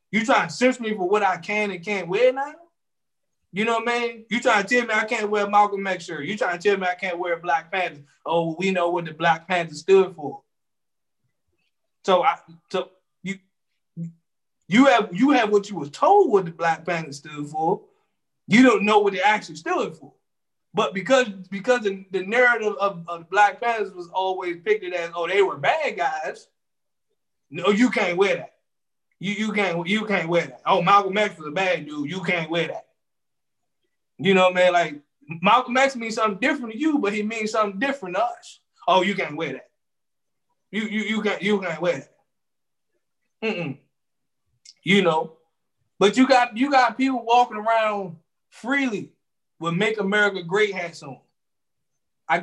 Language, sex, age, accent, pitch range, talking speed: English, male, 20-39, American, 175-230 Hz, 190 wpm